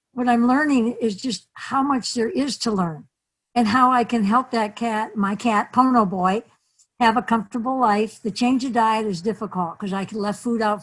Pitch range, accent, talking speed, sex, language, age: 205-250 Hz, American, 205 wpm, female, English, 60-79